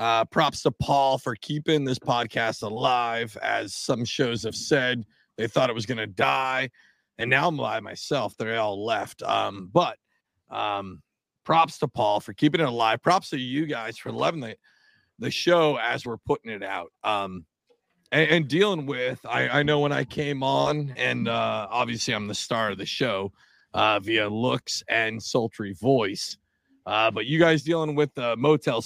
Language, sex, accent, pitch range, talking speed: English, male, American, 115-155 Hz, 185 wpm